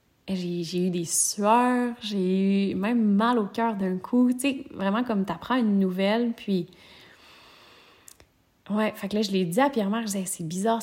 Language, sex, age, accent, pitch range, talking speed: French, female, 30-49, Canadian, 180-220 Hz, 185 wpm